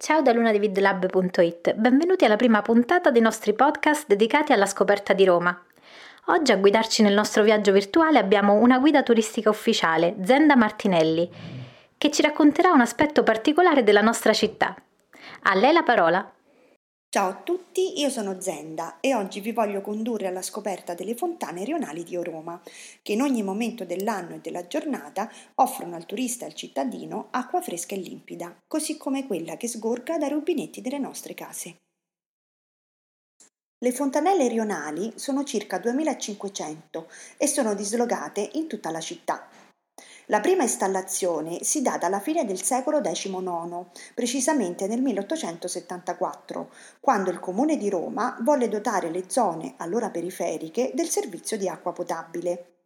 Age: 30-49